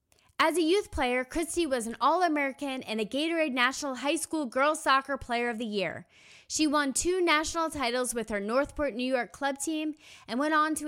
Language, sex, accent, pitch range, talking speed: English, female, American, 240-320 Hz, 200 wpm